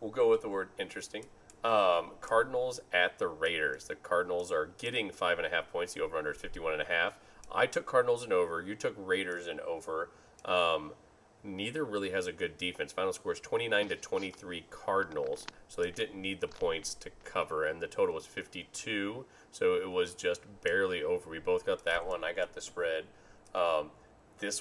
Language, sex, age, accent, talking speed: English, male, 30-49, American, 200 wpm